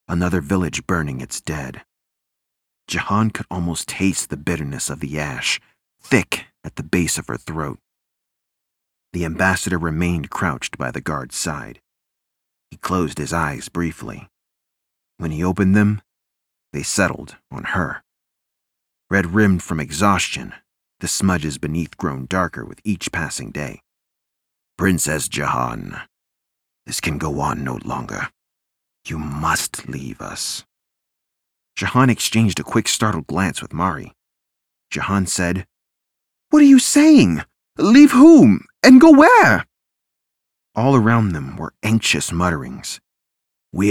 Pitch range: 75-105 Hz